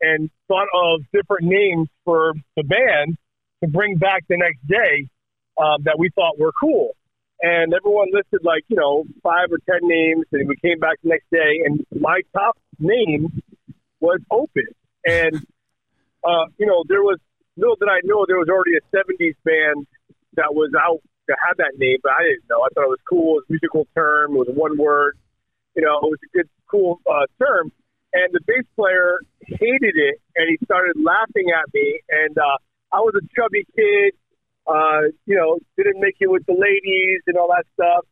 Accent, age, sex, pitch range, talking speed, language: American, 40-59, male, 160-205 Hz, 195 wpm, English